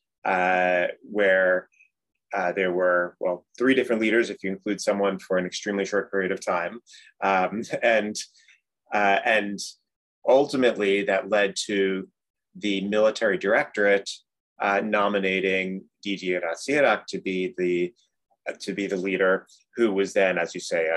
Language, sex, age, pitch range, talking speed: English, male, 30-49, 95-110 Hz, 140 wpm